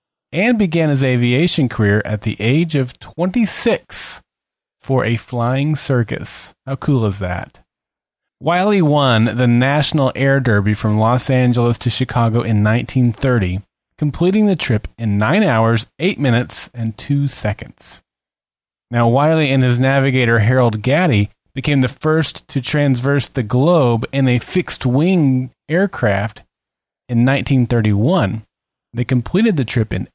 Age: 30-49